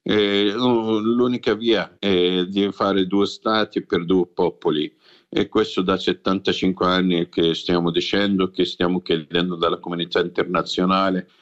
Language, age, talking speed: Italian, 50-69, 130 wpm